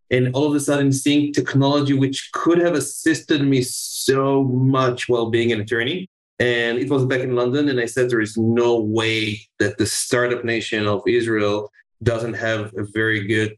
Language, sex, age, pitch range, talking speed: English, male, 20-39, 115-135 Hz, 185 wpm